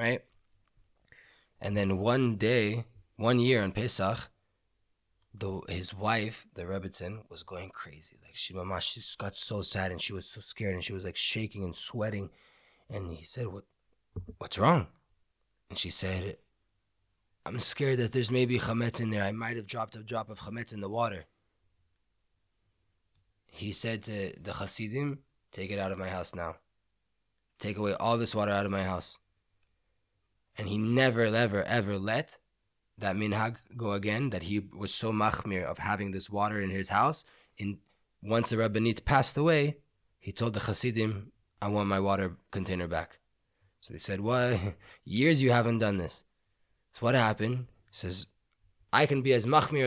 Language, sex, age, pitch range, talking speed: English, male, 20-39, 95-110 Hz, 170 wpm